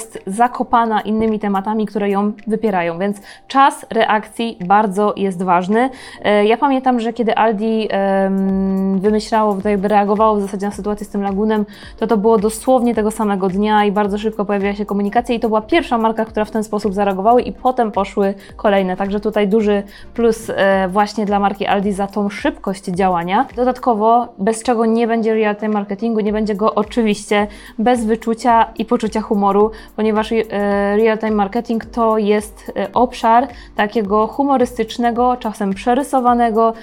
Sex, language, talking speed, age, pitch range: female, Polish, 150 wpm, 20-39, 205-230 Hz